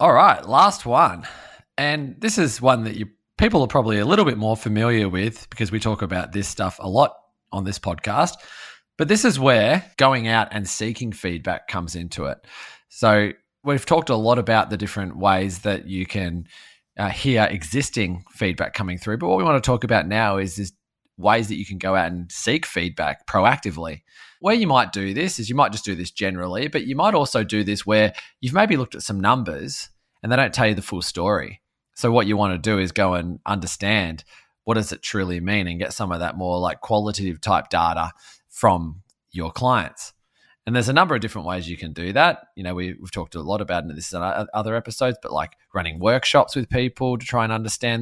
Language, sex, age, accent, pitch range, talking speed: English, male, 20-39, Australian, 95-120 Hz, 220 wpm